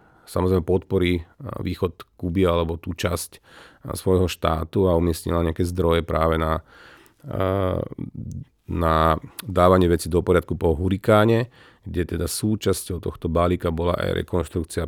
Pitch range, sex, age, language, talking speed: 85-95 Hz, male, 40-59, Slovak, 120 wpm